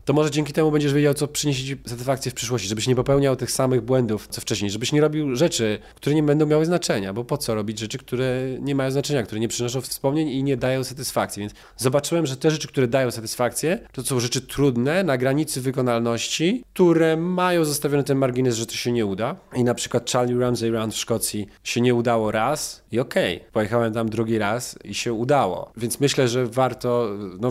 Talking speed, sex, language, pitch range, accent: 215 wpm, male, Polish, 110-135 Hz, native